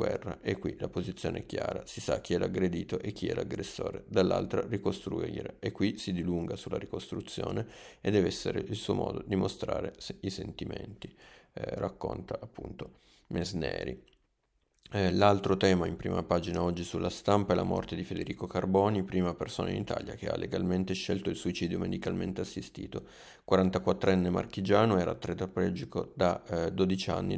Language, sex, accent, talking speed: Italian, male, native, 155 wpm